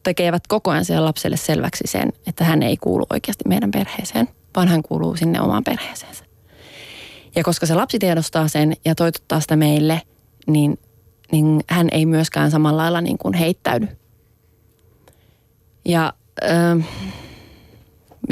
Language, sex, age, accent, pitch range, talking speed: Finnish, female, 20-39, native, 135-170 Hz, 140 wpm